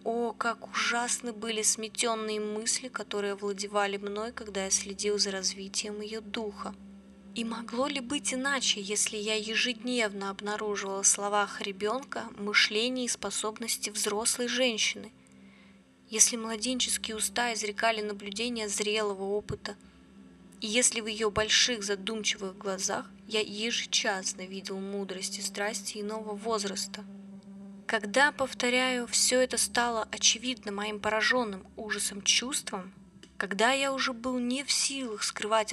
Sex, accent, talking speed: female, native, 125 wpm